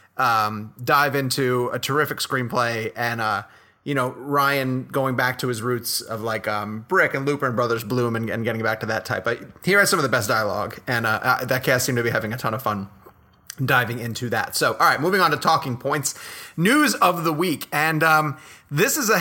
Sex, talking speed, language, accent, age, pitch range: male, 225 wpm, English, American, 30-49, 120-170 Hz